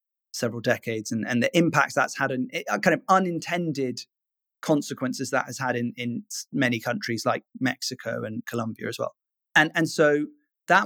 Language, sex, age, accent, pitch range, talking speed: English, male, 20-39, British, 125-145 Hz, 165 wpm